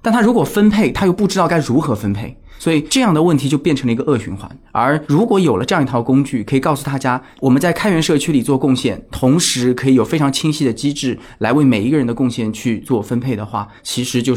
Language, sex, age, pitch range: Chinese, male, 20-39, 115-155 Hz